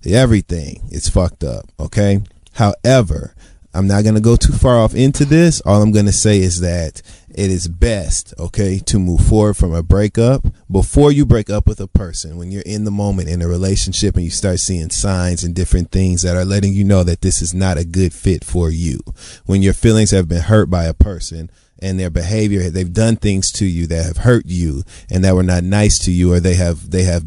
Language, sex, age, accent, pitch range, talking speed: English, male, 30-49, American, 90-105 Hz, 225 wpm